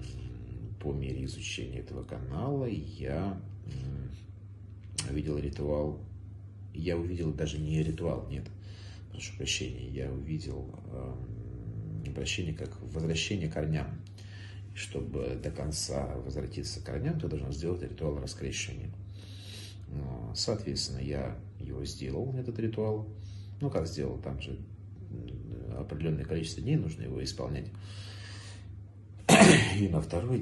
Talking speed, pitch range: 105 wpm, 80-100 Hz